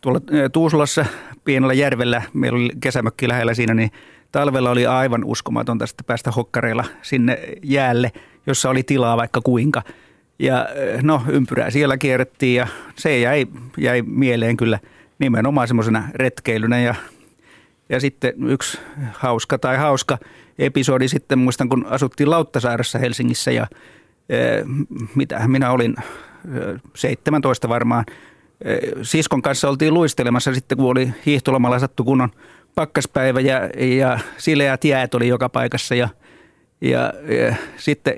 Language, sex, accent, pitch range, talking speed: Finnish, male, native, 125-140 Hz, 125 wpm